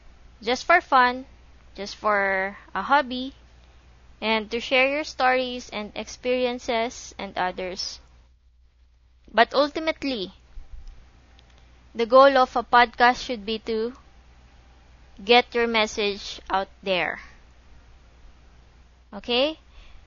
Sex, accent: female, Filipino